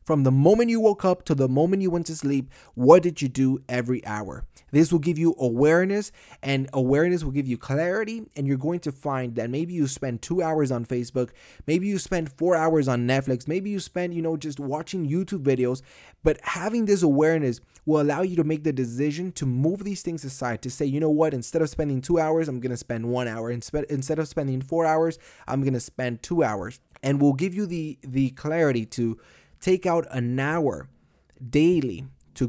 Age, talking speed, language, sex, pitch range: 20-39, 215 wpm, English, male, 125-160 Hz